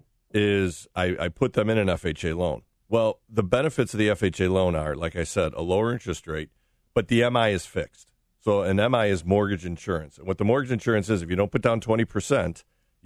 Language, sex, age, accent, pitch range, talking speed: English, male, 40-59, American, 85-105 Hz, 215 wpm